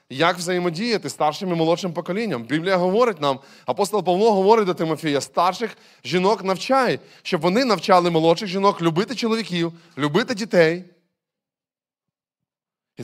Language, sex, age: Ukrainian, male, 20-39